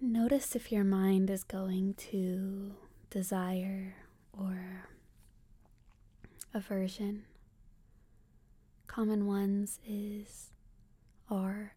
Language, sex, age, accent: English, female, 20-39, American